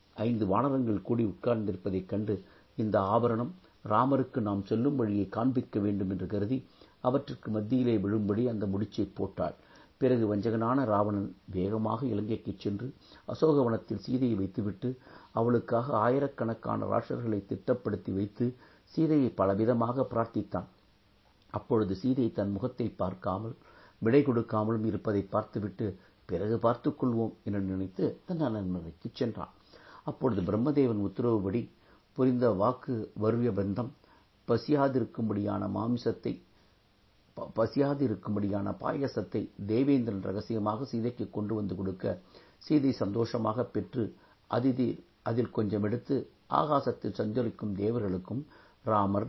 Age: 60-79